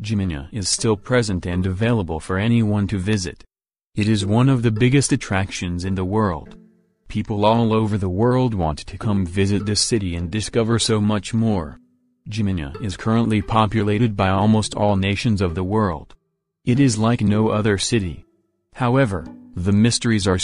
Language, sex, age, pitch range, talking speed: English, male, 40-59, 95-115 Hz, 165 wpm